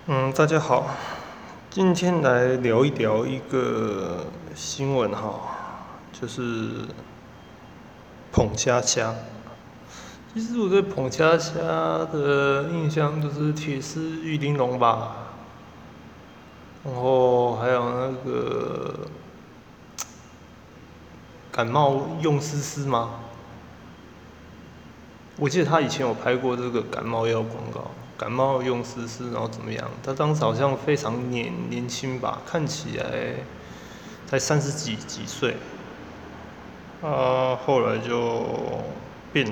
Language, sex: Chinese, male